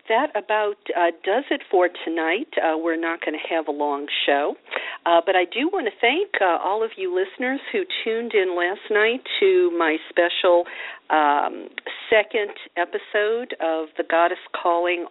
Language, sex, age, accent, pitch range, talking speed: English, female, 50-69, American, 145-210 Hz, 170 wpm